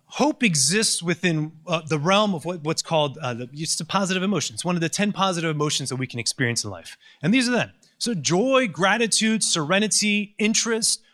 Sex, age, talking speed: male, 30-49, 190 wpm